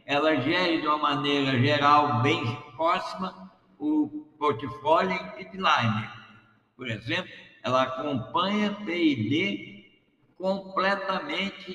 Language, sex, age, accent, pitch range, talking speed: Portuguese, male, 60-79, Brazilian, 145-205 Hz, 90 wpm